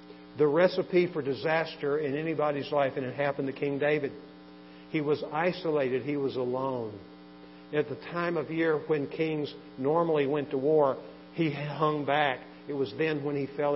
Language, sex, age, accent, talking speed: English, male, 50-69, American, 170 wpm